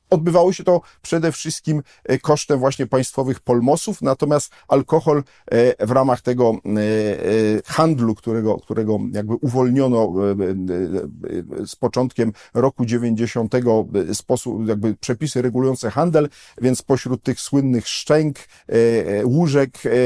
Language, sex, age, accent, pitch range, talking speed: Polish, male, 50-69, native, 110-135 Hz, 100 wpm